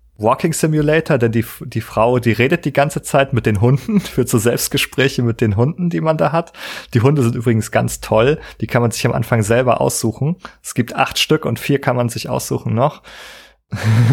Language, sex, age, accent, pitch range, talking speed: German, male, 30-49, German, 110-140 Hz, 210 wpm